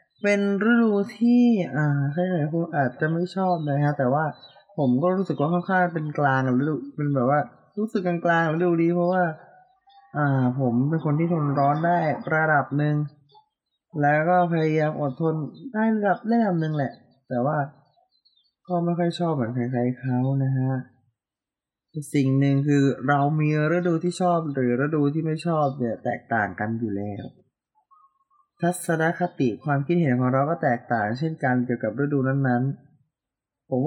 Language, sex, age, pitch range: Thai, male, 20-39, 135-180 Hz